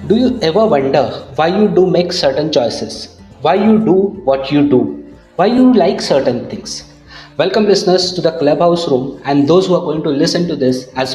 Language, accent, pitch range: English, Indian, 135-180 Hz